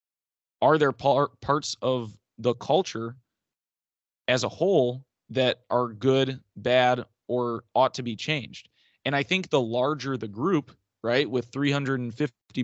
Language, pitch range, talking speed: English, 115-140 Hz, 135 wpm